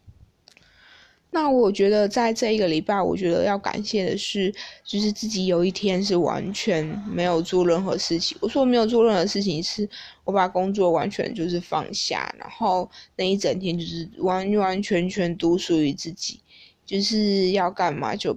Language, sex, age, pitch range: Chinese, female, 20-39, 180-220 Hz